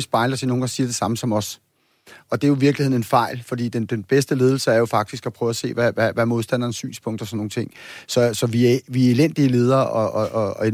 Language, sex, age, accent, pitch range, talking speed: Danish, male, 30-49, native, 115-130 Hz, 275 wpm